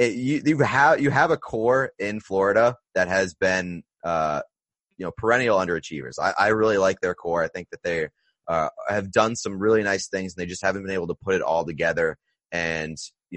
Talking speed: 210 wpm